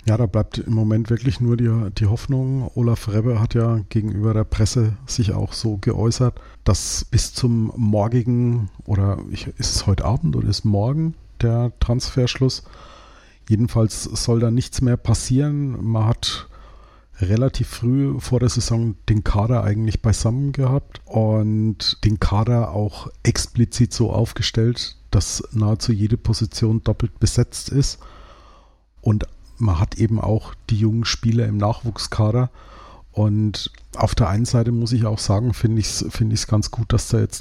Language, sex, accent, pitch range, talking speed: German, male, German, 105-120 Hz, 150 wpm